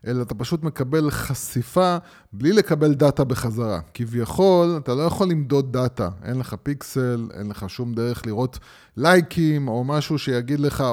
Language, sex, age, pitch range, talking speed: Hebrew, male, 20-39, 115-150 Hz, 155 wpm